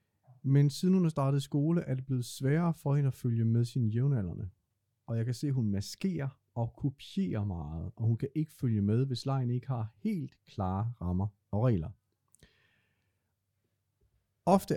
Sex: male